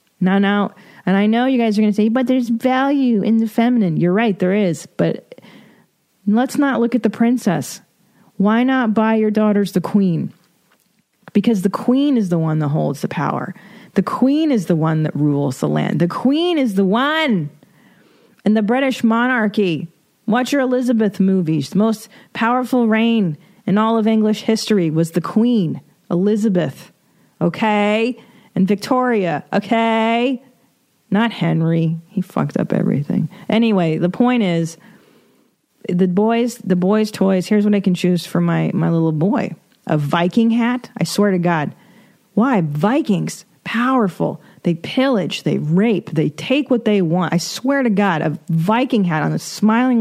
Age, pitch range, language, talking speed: 40-59, 180-230 Hz, English, 165 wpm